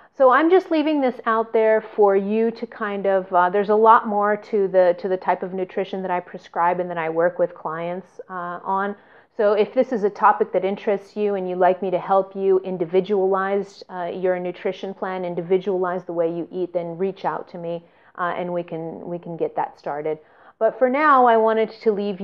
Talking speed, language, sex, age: 220 wpm, English, female, 30-49